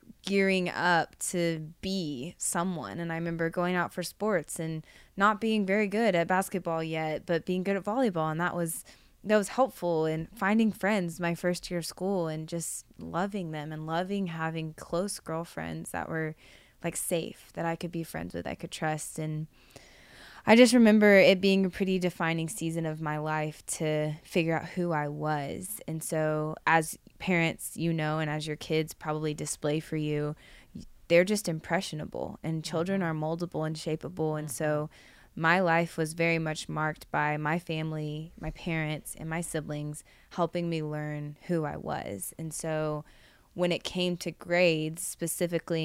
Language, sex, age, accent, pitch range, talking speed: English, female, 20-39, American, 155-180 Hz, 175 wpm